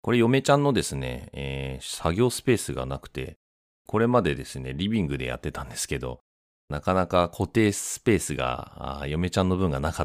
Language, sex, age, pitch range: Japanese, male, 30-49, 65-100 Hz